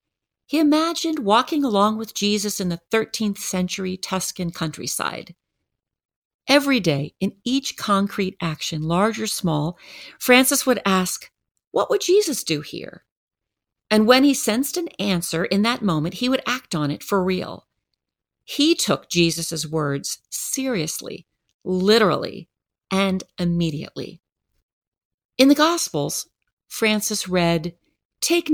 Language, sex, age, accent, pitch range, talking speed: English, female, 40-59, American, 180-255 Hz, 125 wpm